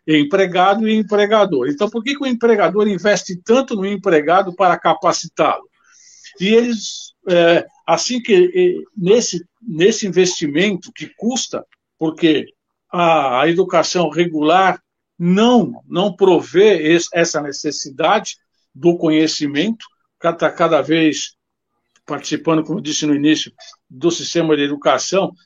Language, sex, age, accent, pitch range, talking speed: Portuguese, male, 60-79, Brazilian, 165-215 Hz, 115 wpm